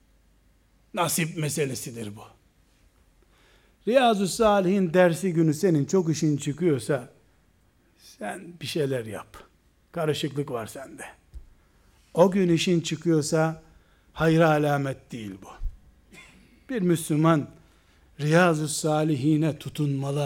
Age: 60-79